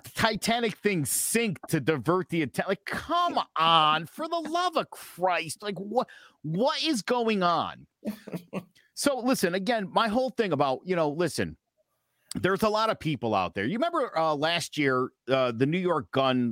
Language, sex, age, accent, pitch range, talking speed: English, male, 50-69, American, 120-200 Hz, 175 wpm